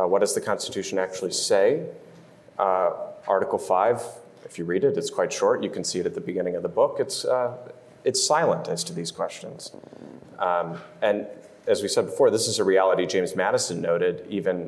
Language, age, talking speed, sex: English, 30-49, 195 wpm, male